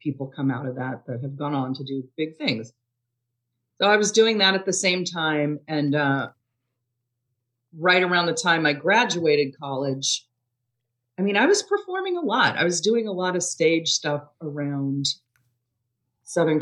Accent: American